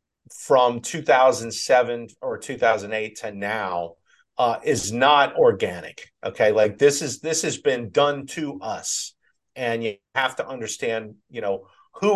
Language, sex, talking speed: English, male, 140 wpm